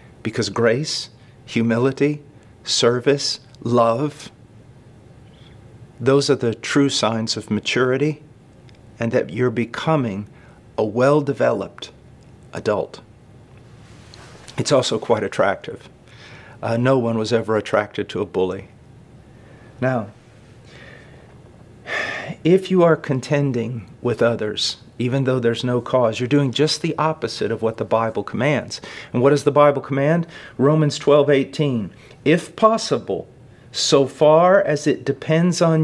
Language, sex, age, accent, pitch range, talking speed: English, male, 50-69, American, 115-145 Hz, 115 wpm